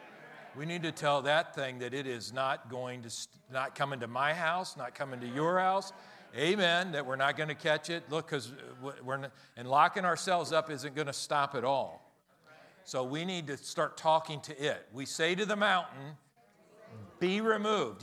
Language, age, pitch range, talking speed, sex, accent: English, 50-69, 140-180 Hz, 195 wpm, male, American